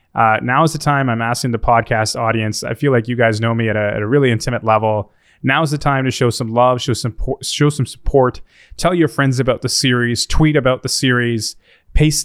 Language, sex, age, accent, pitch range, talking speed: English, male, 20-39, American, 110-130 Hz, 230 wpm